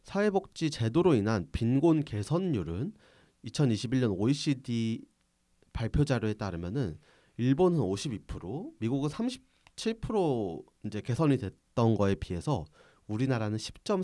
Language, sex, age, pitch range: Korean, male, 30-49, 105-160 Hz